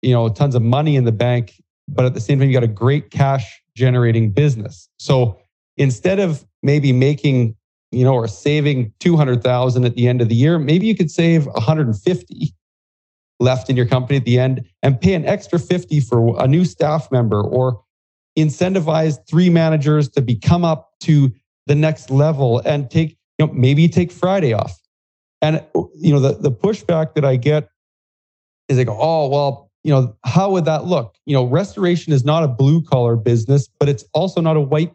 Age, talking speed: 40-59, 200 wpm